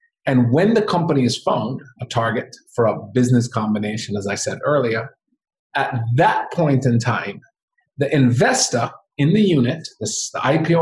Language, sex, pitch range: English, male, 125-200 Hz